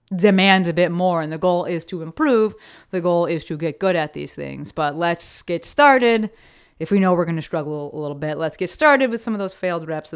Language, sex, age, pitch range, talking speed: English, female, 20-39, 160-235 Hz, 255 wpm